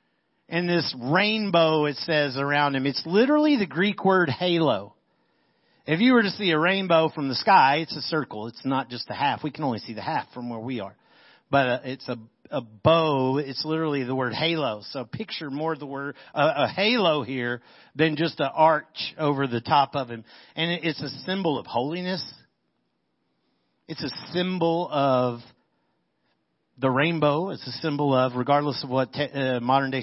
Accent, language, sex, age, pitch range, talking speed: American, English, male, 50-69, 135-175 Hz, 185 wpm